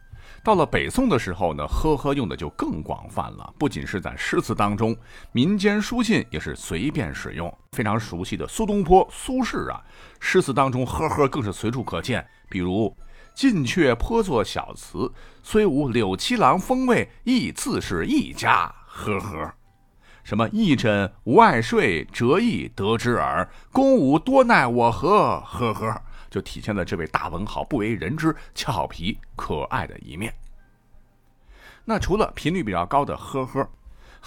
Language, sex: Chinese, male